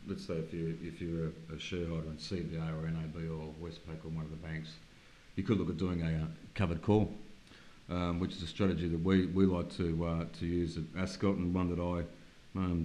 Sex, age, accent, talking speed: male, 40-59, Australian, 225 wpm